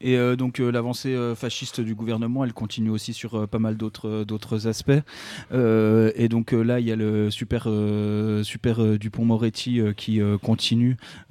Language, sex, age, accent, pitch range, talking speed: French, male, 20-39, French, 105-120 Hz, 180 wpm